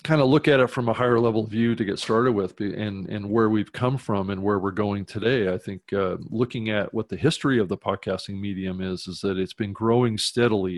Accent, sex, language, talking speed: American, male, English, 245 wpm